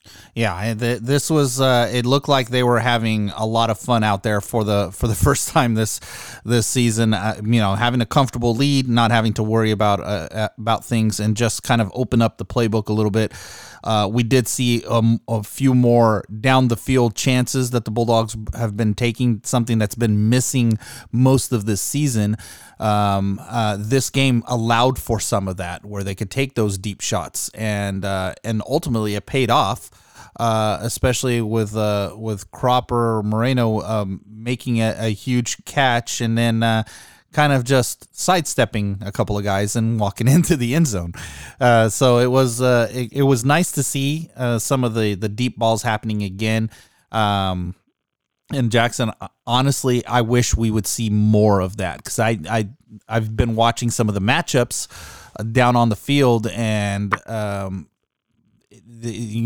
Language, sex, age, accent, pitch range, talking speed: English, male, 30-49, American, 105-125 Hz, 180 wpm